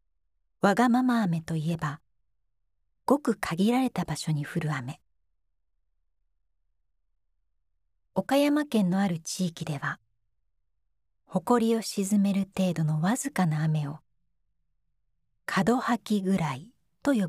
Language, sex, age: Japanese, female, 40-59